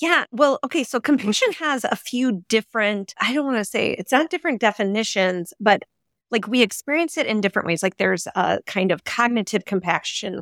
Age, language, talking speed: 30-49, English, 190 wpm